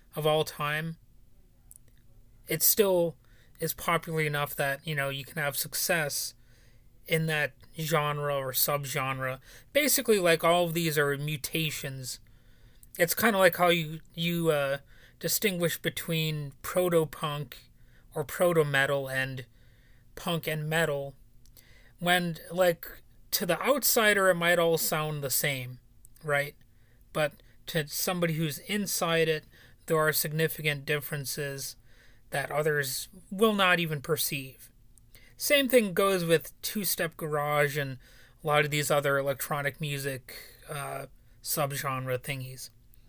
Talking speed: 125 wpm